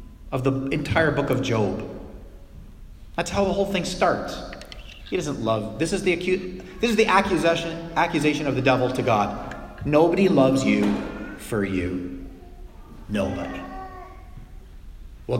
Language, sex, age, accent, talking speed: English, male, 30-49, American, 140 wpm